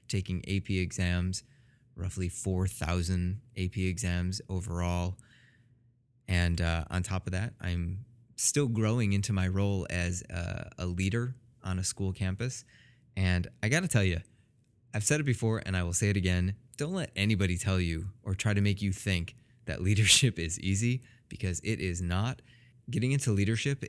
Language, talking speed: English, 165 wpm